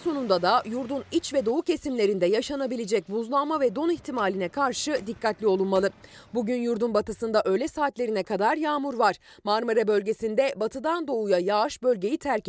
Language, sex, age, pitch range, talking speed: Turkish, female, 30-49, 210-295 Hz, 145 wpm